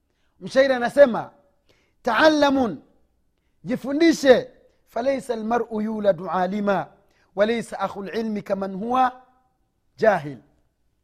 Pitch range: 210-275 Hz